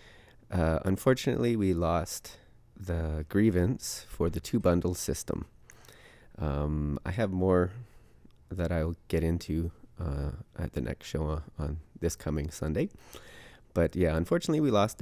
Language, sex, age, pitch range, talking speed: English, male, 30-49, 75-95 Hz, 135 wpm